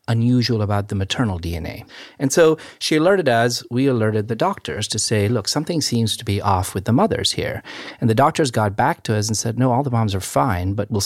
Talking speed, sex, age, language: 235 wpm, male, 40-59, English